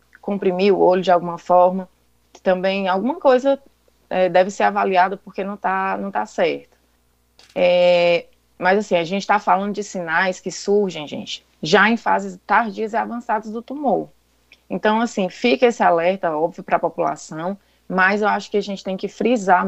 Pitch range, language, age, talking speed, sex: 170-205 Hz, Portuguese, 20-39, 175 wpm, female